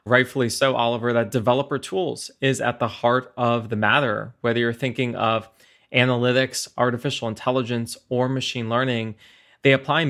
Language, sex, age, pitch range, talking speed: English, male, 20-39, 115-135 Hz, 155 wpm